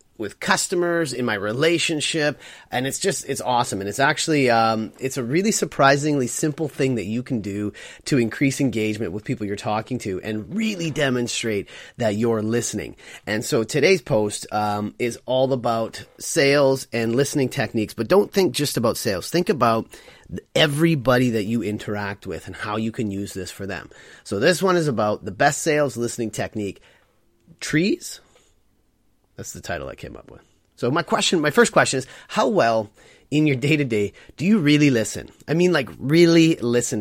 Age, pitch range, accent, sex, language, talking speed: 30-49, 110-155 Hz, American, male, English, 180 wpm